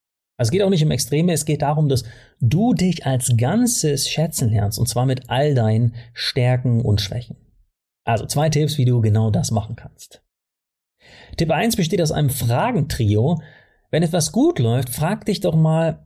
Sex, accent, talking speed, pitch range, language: male, German, 175 wpm, 120-160 Hz, German